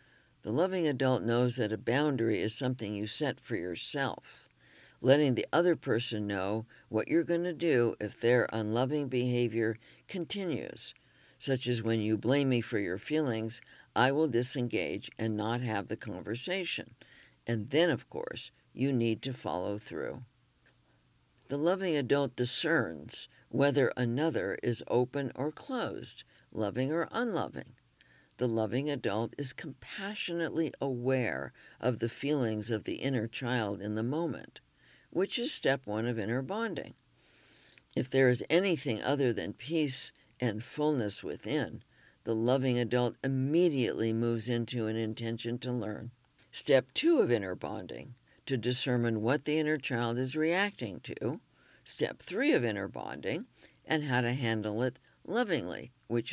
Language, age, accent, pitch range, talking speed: English, 60-79, American, 115-145 Hz, 145 wpm